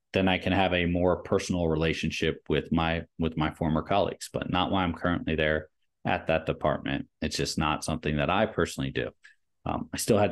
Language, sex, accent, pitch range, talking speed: English, male, American, 80-100 Hz, 205 wpm